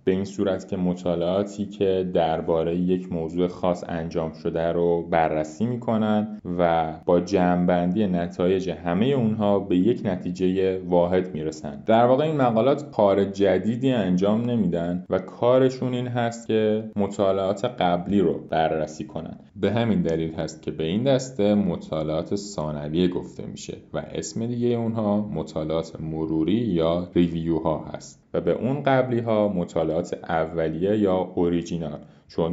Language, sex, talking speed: Persian, male, 140 wpm